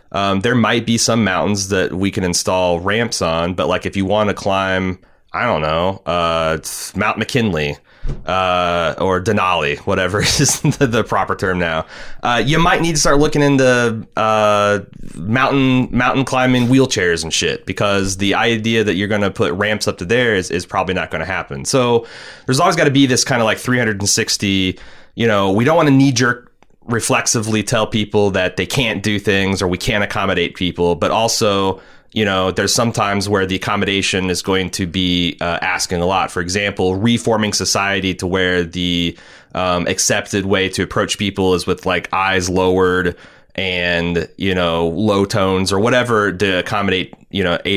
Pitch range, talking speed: 95-115 Hz, 185 wpm